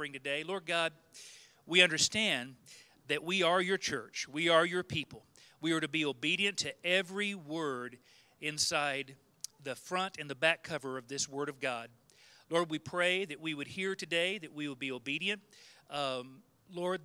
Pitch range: 140-170 Hz